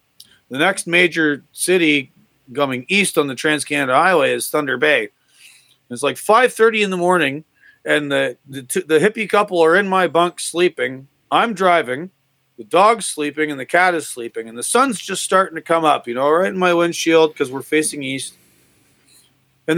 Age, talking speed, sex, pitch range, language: 40-59, 185 wpm, male, 135-175 Hz, English